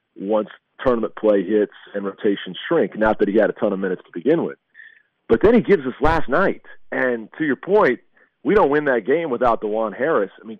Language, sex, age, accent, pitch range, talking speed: English, male, 40-59, American, 100-115 Hz, 220 wpm